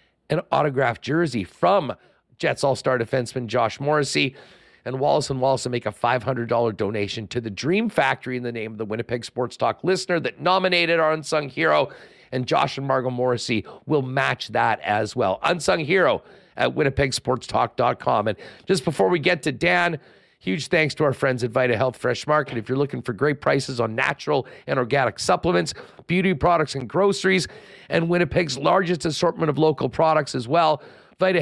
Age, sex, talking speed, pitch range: 50-69, male, 175 wpm, 130-170 Hz